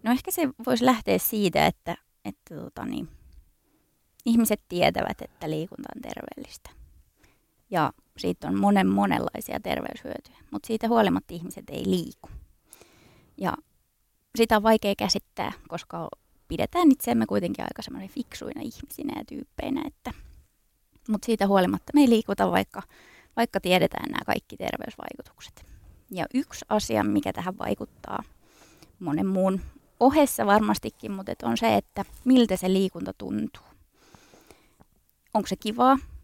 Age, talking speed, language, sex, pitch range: 20-39, 125 wpm, Finnish, female, 180-255 Hz